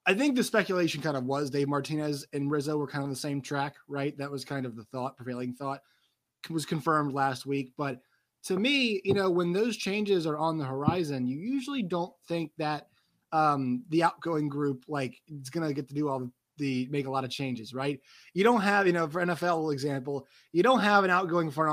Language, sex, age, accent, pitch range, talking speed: English, male, 20-39, American, 140-185 Hz, 225 wpm